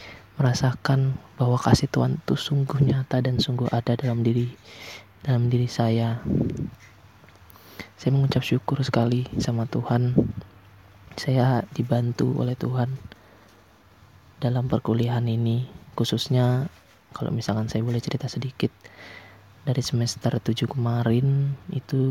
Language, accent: Indonesian, native